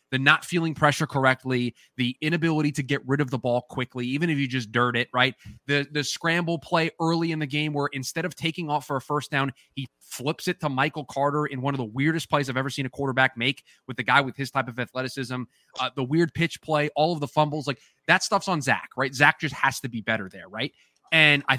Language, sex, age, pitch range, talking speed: English, male, 20-39, 130-160 Hz, 245 wpm